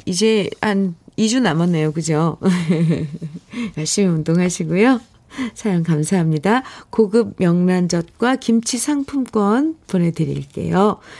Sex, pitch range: female, 175-250 Hz